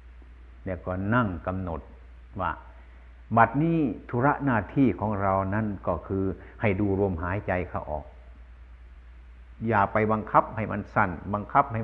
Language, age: Thai, 60-79